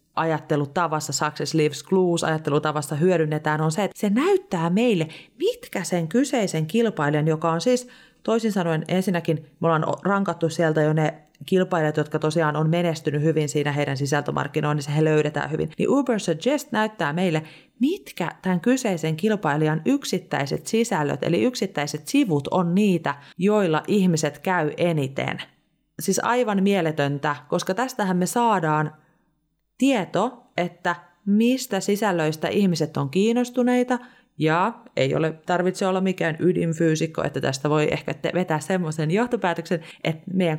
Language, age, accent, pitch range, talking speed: Finnish, 30-49, native, 155-190 Hz, 135 wpm